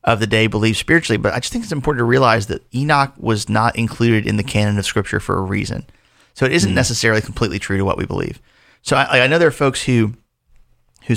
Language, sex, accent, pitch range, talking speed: English, male, American, 110-135 Hz, 240 wpm